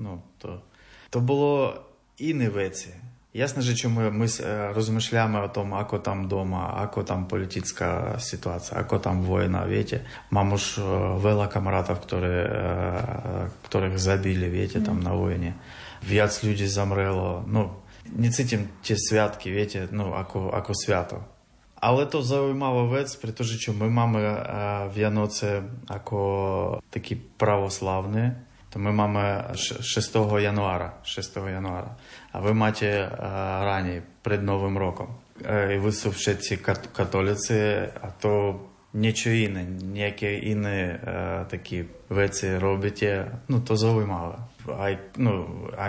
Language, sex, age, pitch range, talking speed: Slovak, male, 20-39, 95-110 Hz, 120 wpm